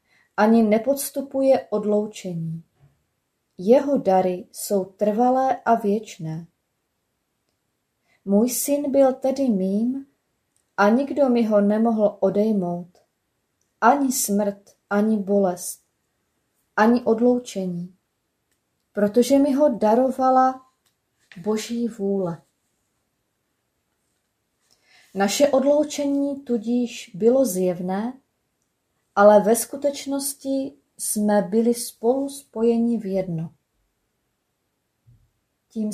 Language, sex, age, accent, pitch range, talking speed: Czech, female, 20-39, native, 195-245 Hz, 80 wpm